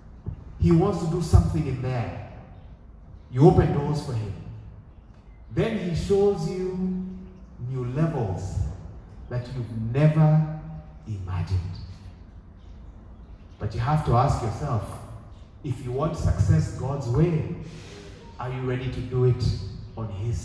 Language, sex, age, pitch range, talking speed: English, male, 30-49, 100-150 Hz, 125 wpm